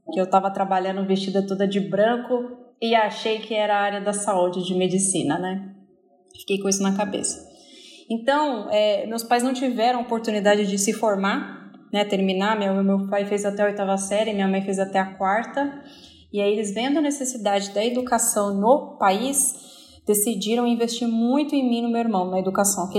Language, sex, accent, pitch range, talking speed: Portuguese, female, Brazilian, 195-235 Hz, 190 wpm